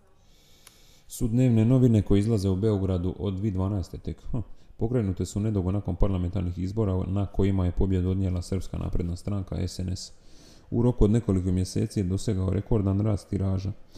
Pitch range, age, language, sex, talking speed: 95-110 Hz, 30-49, Croatian, male, 145 wpm